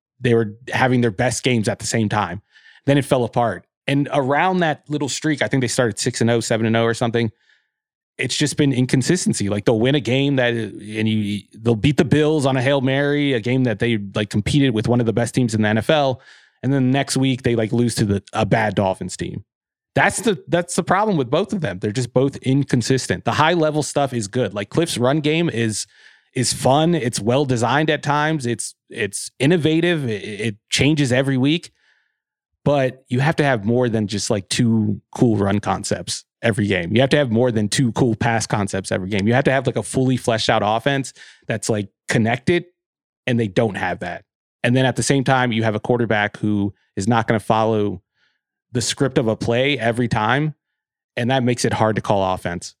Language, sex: English, male